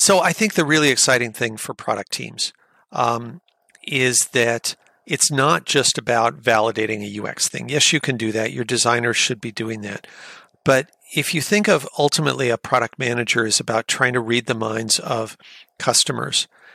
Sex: male